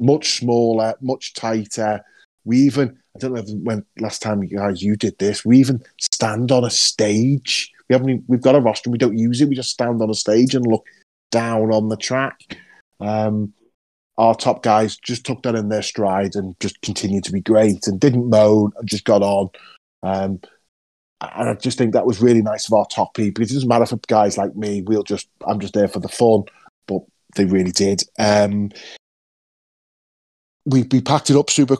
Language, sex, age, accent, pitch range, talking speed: English, male, 30-49, British, 100-120 Hz, 195 wpm